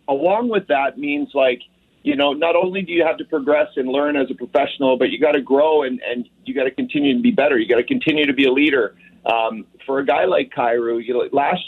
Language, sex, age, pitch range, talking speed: English, male, 40-59, 130-180 Hz, 245 wpm